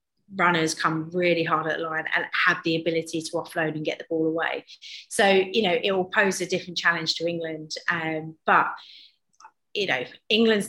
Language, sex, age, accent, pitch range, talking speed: English, female, 30-49, British, 165-185 Hz, 185 wpm